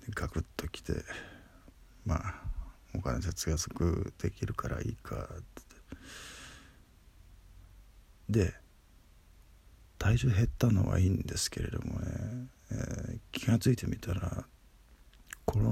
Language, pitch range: Japanese, 85-115 Hz